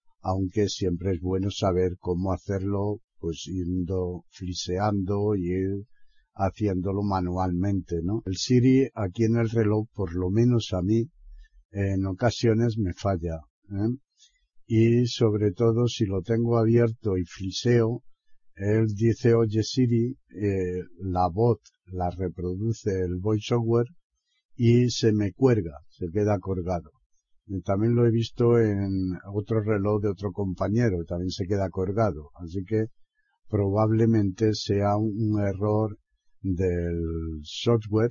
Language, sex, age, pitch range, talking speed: Spanish, male, 60-79, 95-115 Hz, 125 wpm